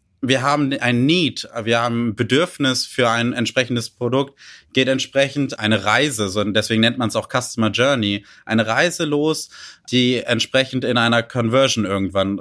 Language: German